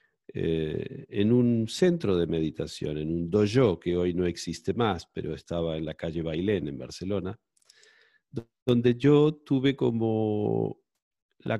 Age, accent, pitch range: 50-69, Argentinian, 85-130 Hz